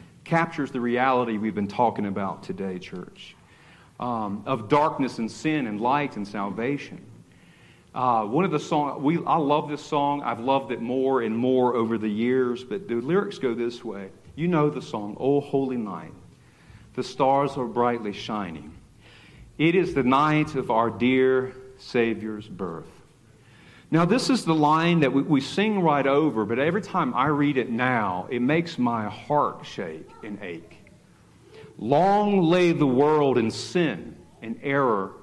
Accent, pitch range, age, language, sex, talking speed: American, 120-160 Hz, 50-69, English, male, 165 wpm